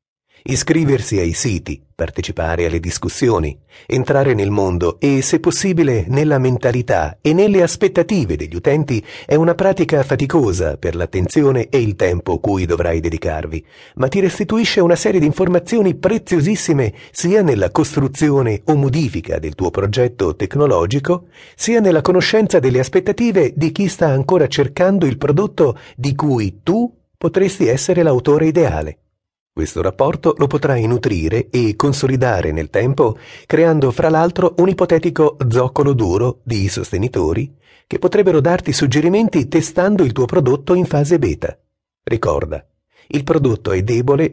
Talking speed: 135 wpm